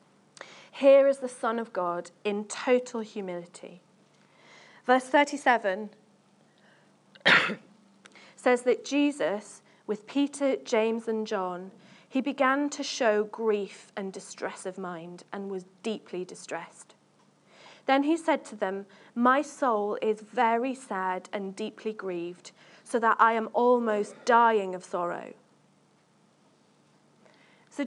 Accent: British